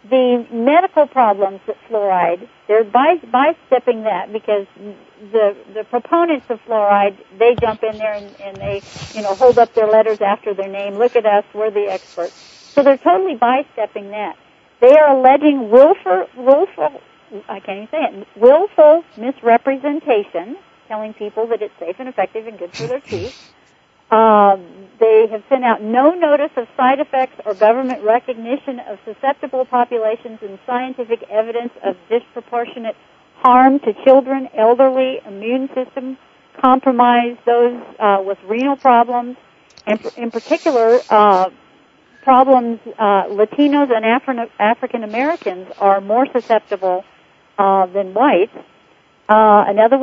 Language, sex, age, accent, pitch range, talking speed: English, female, 50-69, American, 210-265 Hz, 145 wpm